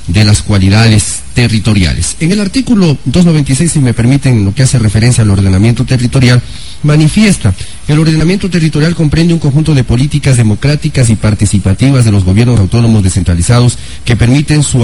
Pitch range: 100-145 Hz